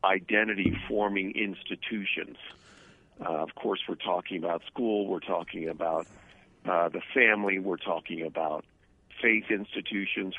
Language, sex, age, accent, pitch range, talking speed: English, male, 50-69, American, 95-105 Hz, 115 wpm